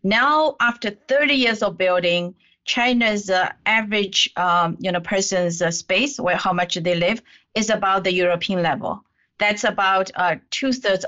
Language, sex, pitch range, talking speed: English, female, 180-235 Hz, 160 wpm